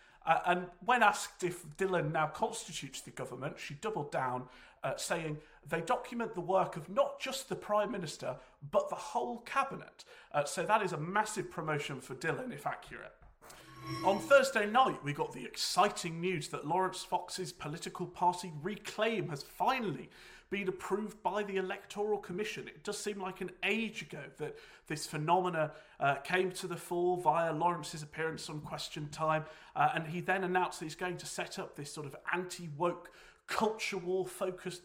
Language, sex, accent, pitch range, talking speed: English, male, British, 150-185 Hz, 170 wpm